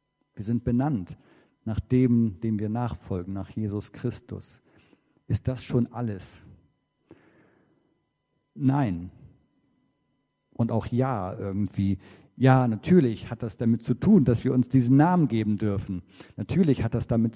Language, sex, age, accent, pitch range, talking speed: German, male, 50-69, German, 110-145 Hz, 130 wpm